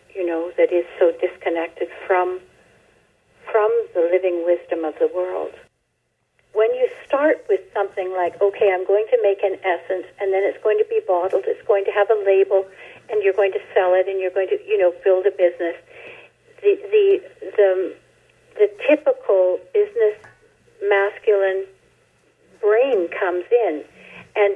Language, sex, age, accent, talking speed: English, female, 60-79, American, 160 wpm